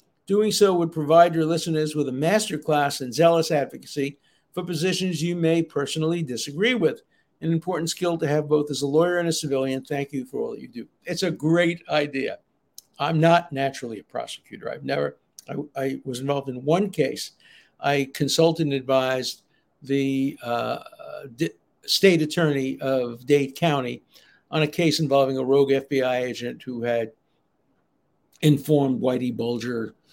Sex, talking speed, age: male, 155 wpm, 60-79